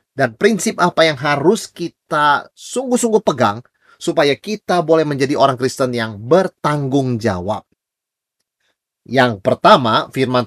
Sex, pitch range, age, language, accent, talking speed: male, 125-185 Hz, 30-49, Indonesian, native, 115 wpm